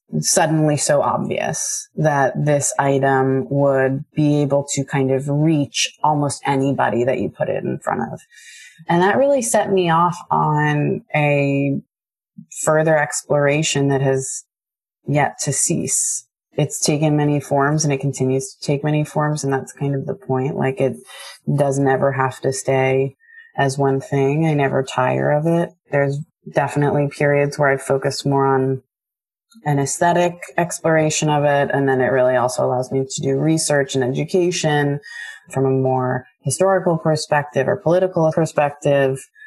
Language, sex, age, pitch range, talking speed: English, female, 30-49, 135-155 Hz, 155 wpm